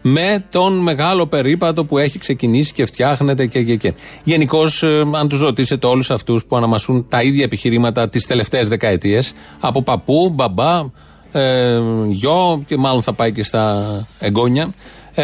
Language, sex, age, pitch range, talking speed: Greek, male, 30-49, 120-165 Hz, 155 wpm